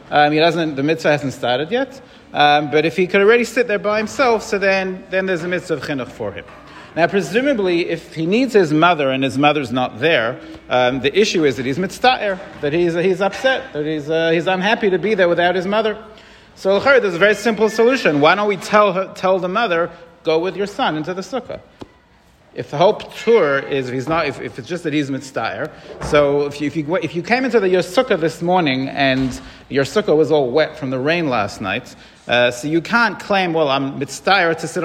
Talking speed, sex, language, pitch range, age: 230 wpm, male, English, 145-190 Hz, 40-59